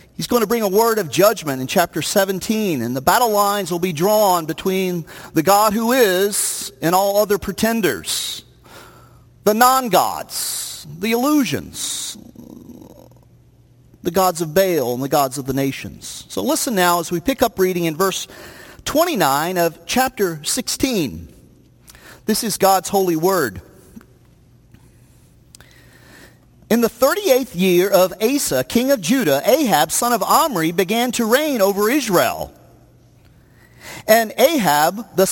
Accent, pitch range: American, 180-245 Hz